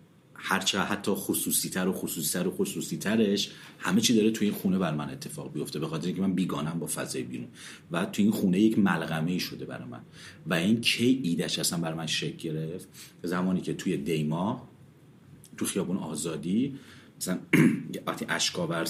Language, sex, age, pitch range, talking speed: Persian, male, 40-59, 80-110 Hz, 185 wpm